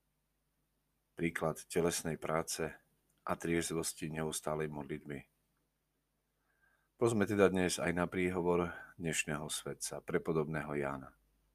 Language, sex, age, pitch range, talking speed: Slovak, male, 40-59, 75-90 Hz, 90 wpm